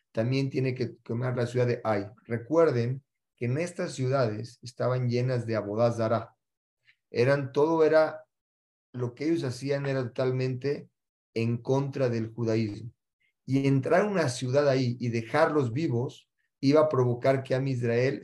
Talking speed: 150 wpm